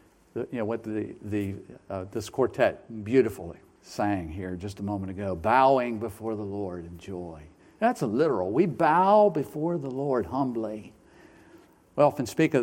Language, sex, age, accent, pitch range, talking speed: English, male, 50-69, American, 105-145 Hz, 160 wpm